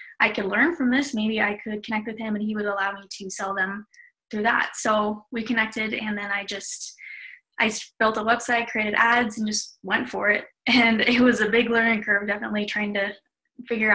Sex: female